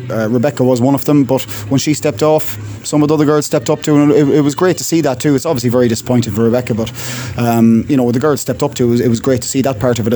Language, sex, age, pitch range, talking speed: English, male, 20-39, 120-140 Hz, 315 wpm